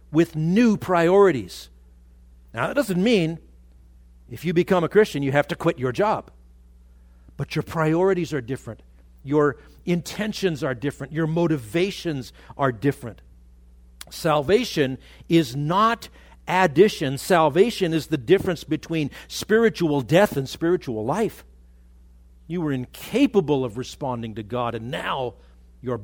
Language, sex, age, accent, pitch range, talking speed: English, male, 50-69, American, 125-180 Hz, 125 wpm